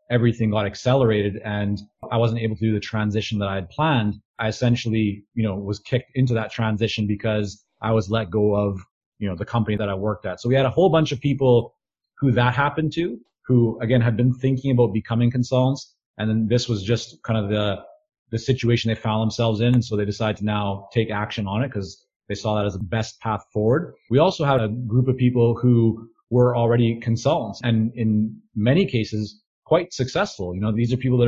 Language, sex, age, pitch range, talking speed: English, male, 30-49, 110-125 Hz, 220 wpm